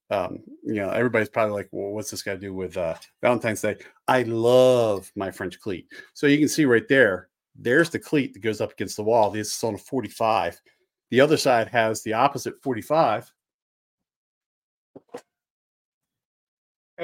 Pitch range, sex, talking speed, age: 110-140 Hz, male, 165 wpm, 40-59